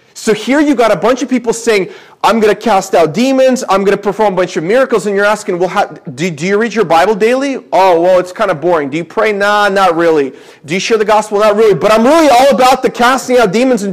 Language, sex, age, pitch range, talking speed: English, male, 30-49, 180-230 Hz, 275 wpm